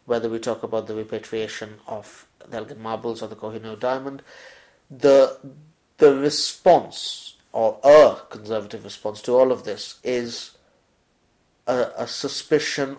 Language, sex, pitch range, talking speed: English, male, 110-130 Hz, 135 wpm